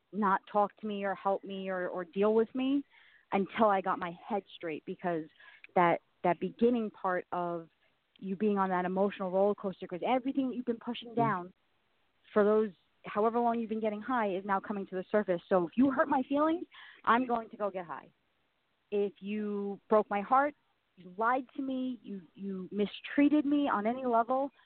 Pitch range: 185-225 Hz